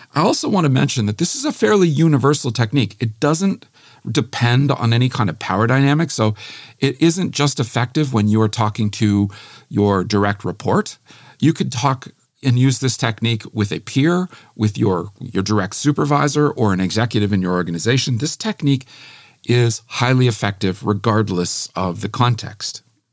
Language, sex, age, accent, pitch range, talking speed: English, male, 50-69, American, 105-135 Hz, 165 wpm